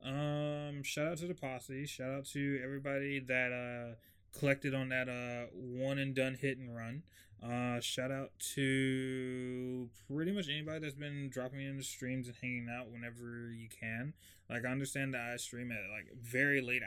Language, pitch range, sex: English, 120-160 Hz, male